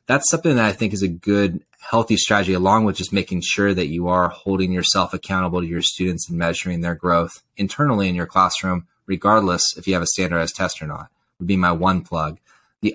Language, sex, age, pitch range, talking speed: English, male, 20-39, 90-110 Hz, 220 wpm